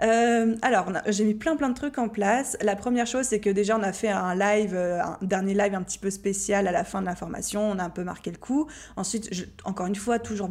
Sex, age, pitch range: female, 20-39, 190-225 Hz